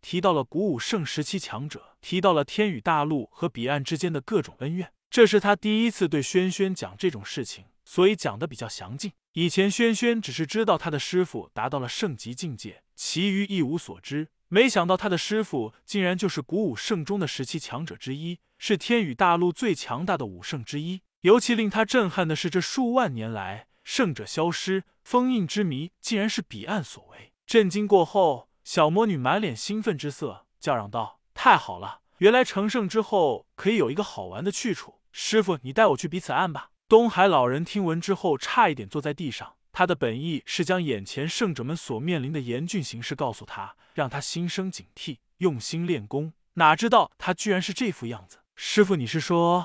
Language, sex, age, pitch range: Chinese, male, 20-39, 145-205 Hz